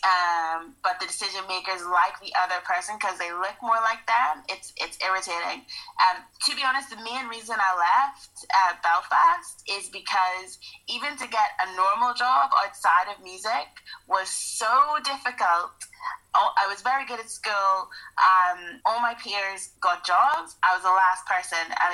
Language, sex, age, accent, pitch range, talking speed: English, female, 30-49, American, 175-205 Hz, 165 wpm